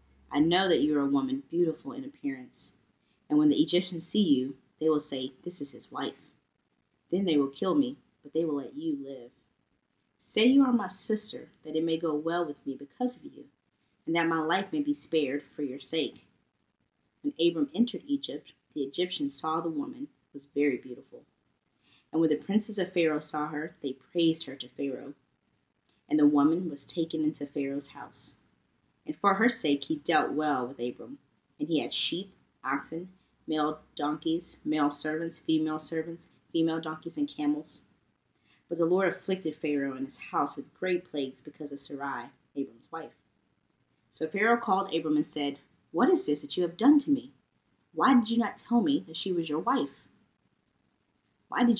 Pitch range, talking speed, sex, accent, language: 145-220 Hz, 185 wpm, female, American, English